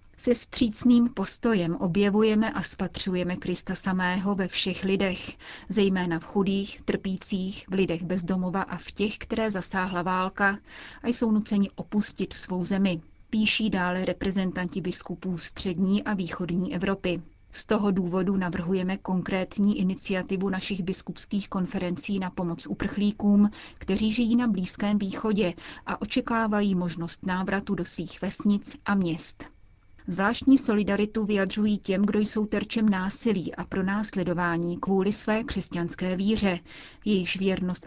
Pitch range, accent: 185-210 Hz, native